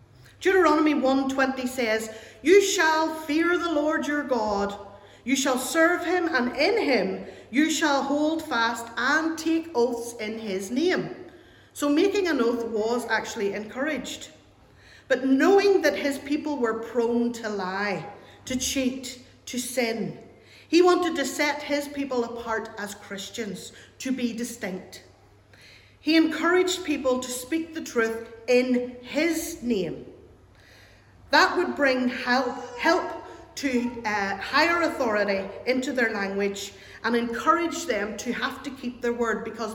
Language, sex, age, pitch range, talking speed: English, female, 50-69, 210-300 Hz, 135 wpm